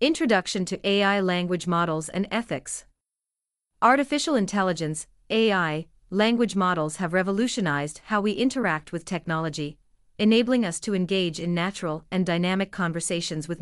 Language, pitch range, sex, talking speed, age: English, 170-220 Hz, female, 125 wpm, 40-59